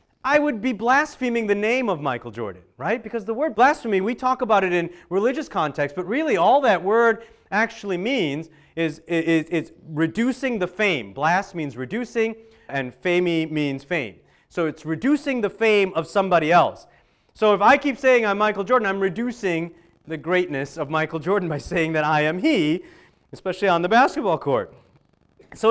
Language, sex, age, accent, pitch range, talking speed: English, male, 40-59, American, 160-230 Hz, 175 wpm